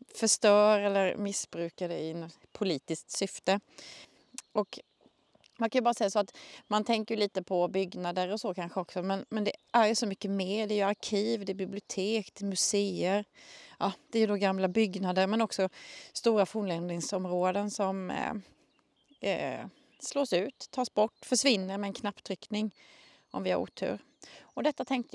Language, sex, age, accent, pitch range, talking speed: Swedish, female, 30-49, native, 195-250 Hz, 170 wpm